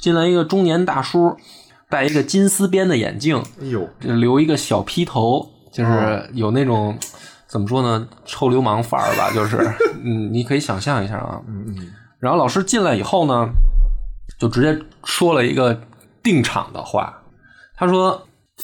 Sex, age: male, 20-39